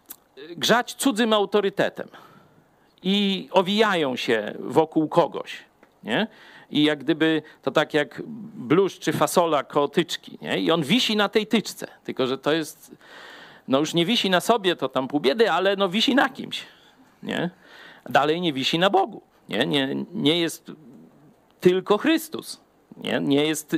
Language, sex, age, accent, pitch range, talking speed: Polish, male, 50-69, native, 155-215 Hz, 150 wpm